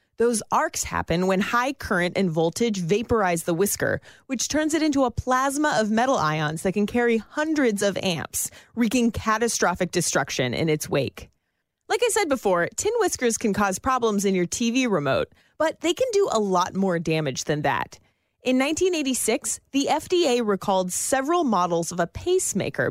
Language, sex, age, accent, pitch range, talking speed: English, female, 30-49, American, 185-265 Hz, 170 wpm